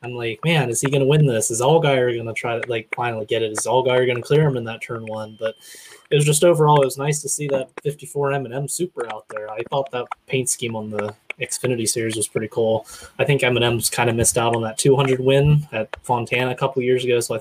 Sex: male